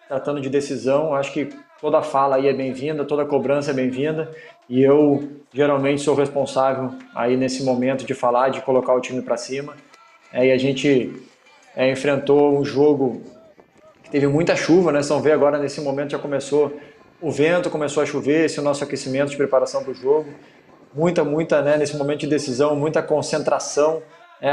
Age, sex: 20-39, male